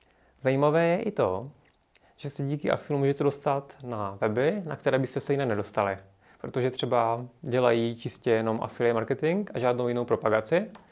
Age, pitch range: 30-49, 115-140 Hz